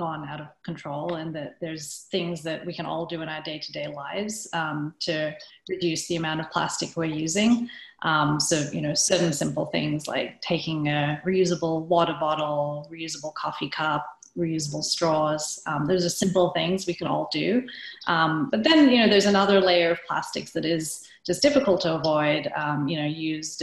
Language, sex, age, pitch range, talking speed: English, female, 30-49, 155-180 Hz, 185 wpm